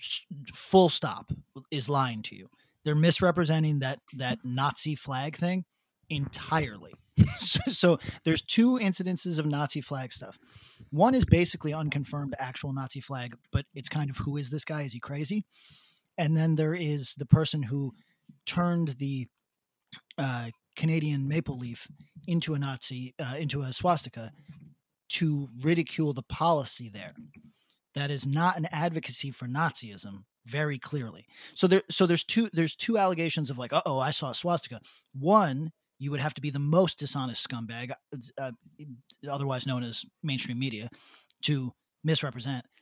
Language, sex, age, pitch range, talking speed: English, male, 30-49, 130-165 Hz, 155 wpm